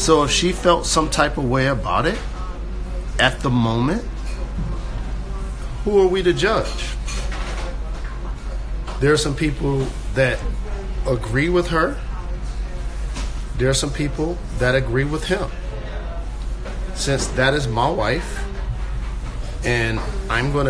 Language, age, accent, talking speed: English, 40-59, American, 120 wpm